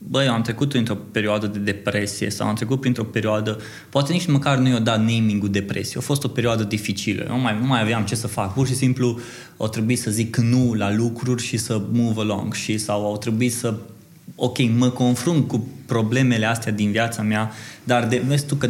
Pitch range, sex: 115-140 Hz, male